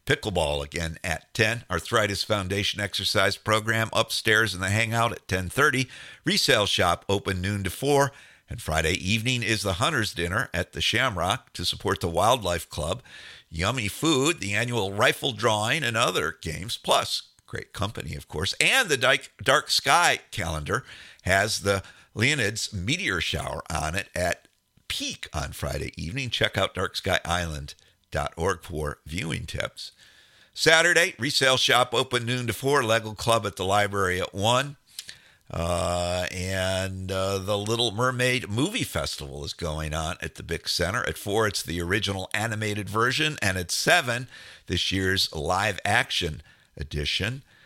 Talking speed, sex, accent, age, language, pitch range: 150 wpm, male, American, 50-69, English, 90-120 Hz